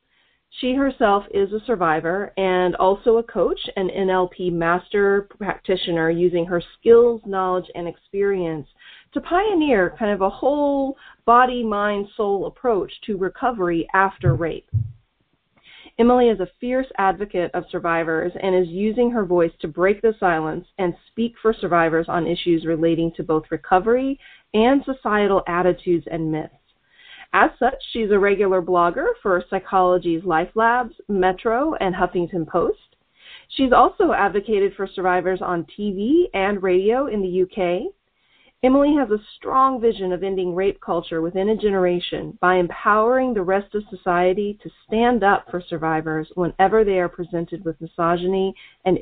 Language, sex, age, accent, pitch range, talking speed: English, female, 30-49, American, 175-230 Hz, 145 wpm